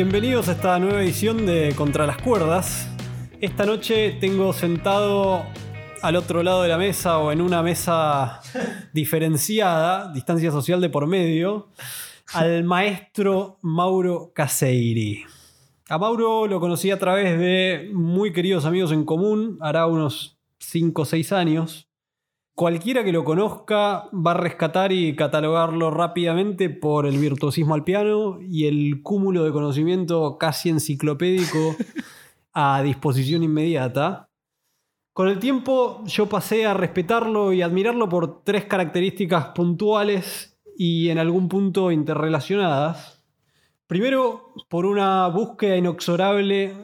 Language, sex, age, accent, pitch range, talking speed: Spanish, male, 20-39, Argentinian, 155-195 Hz, 125 wpm